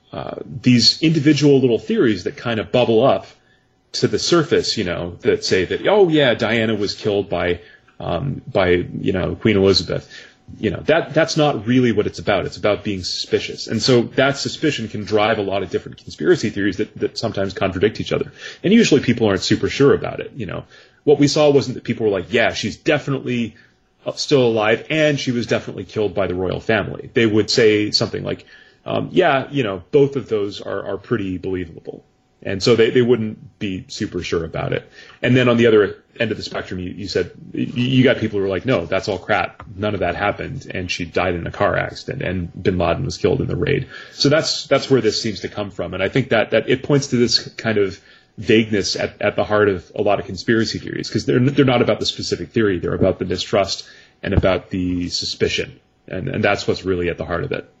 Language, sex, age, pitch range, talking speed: English, male, 30-49, 100-135 Hz, 225 wpm